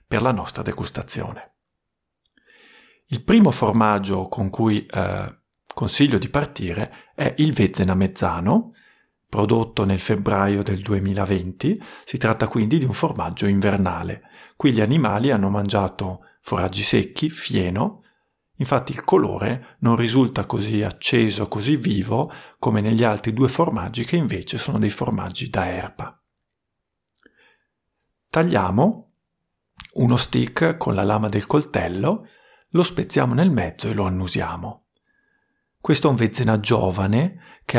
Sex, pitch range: male, 100-130 Hz